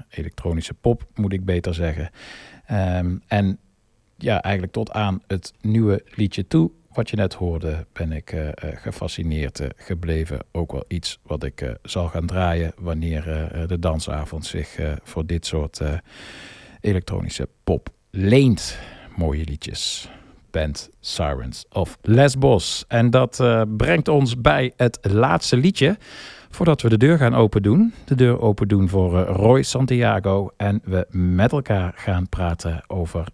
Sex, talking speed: male, 150 wpm